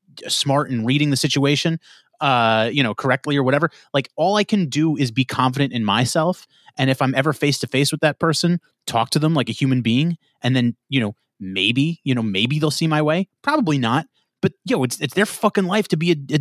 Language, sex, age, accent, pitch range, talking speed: English, male, 30-49, American, 130-175 Hz, 230 wpm